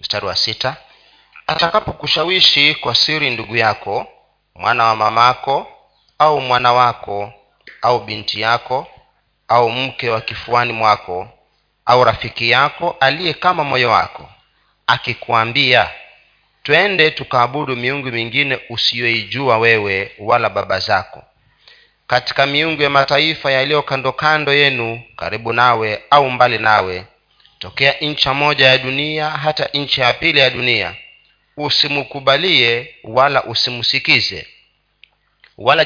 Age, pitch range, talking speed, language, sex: 40-59, 115-145 Hz, 110 wpm, Swahili, male